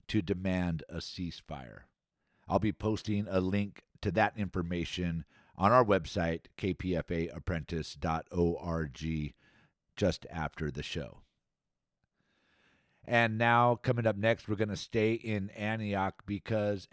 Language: English